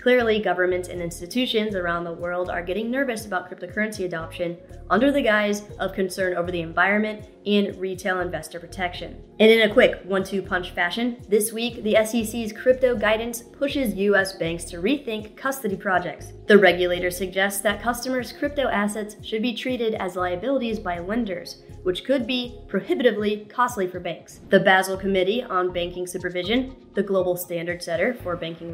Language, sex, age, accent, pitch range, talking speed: English, female, 20-39, American, 180-220 Hz, 160 wpm